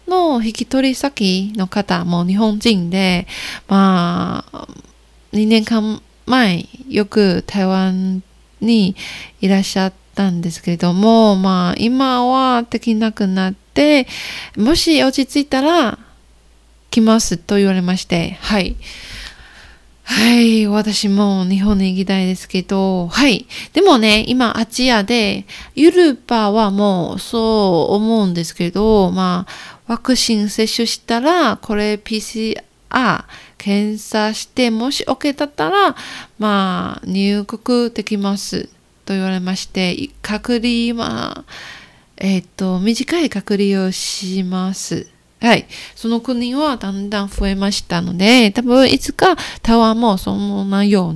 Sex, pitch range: female, 190-235 Hz